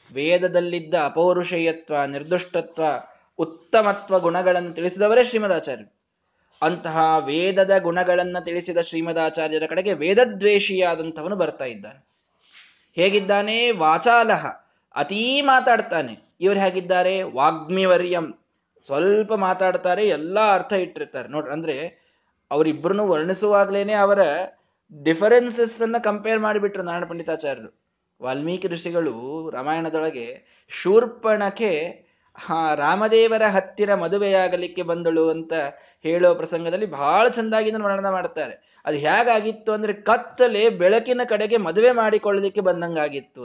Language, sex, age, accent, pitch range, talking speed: Kannada, male, 20-39, native, 165-220 Hz, 90 wpm